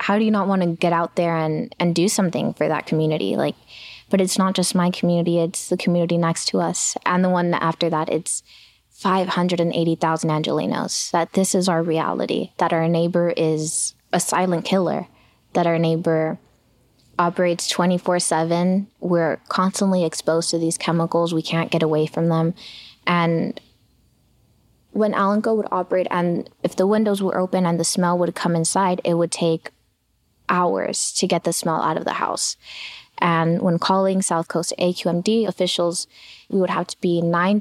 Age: 20-39